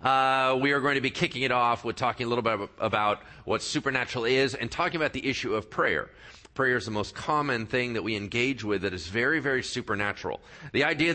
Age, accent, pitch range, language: 40-59, American, 120-175 Hz, English